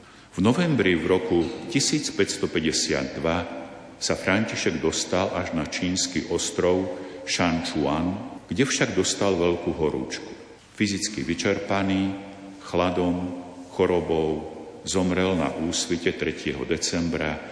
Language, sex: Slovak, male